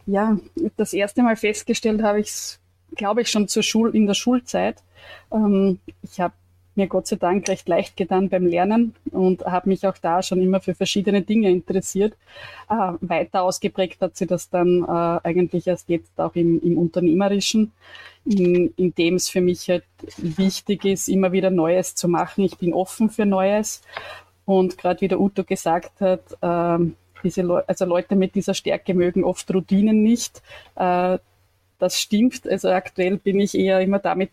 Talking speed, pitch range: 175 wpm, 175-195 Hz